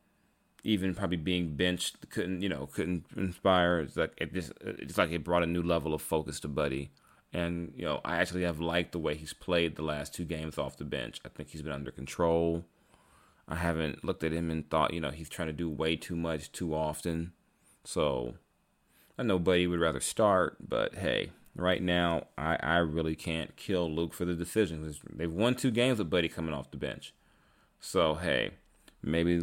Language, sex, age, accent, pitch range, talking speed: English, male, 30-49, American, 75-85 Hz, 195 wpm